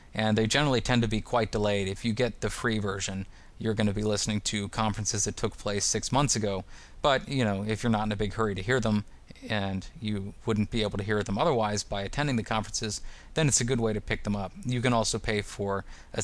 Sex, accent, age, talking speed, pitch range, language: male, American, 30-49, 250 wpm, 100-115 Hz, English